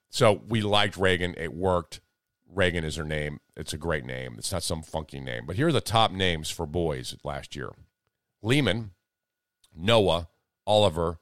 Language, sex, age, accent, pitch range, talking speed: English, male, 50-69, American, 85-115 Hz, 170 wpm